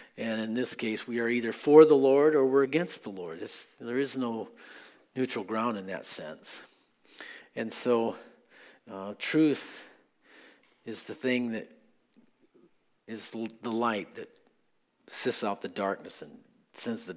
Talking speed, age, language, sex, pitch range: 155 wpm, 50-69, English, male, 105-120 Hz